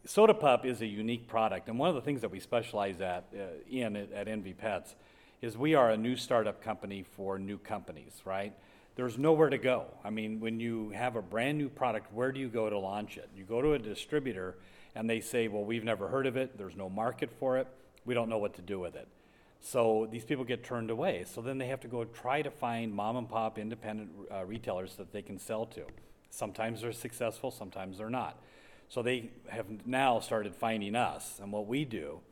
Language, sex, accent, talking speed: English, male, American, 220 wpm